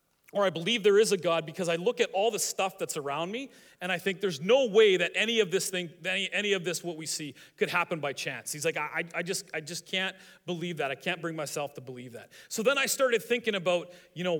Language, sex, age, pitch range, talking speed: English, male, 40-59, 175-220 Hz, 265 wpm